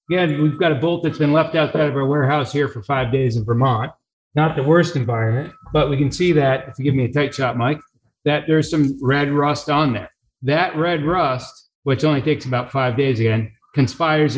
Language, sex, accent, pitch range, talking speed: English, male, American, 130-165 Hz, 220 wpm